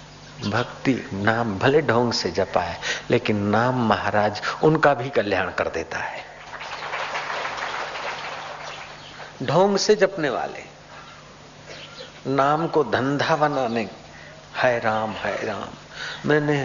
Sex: male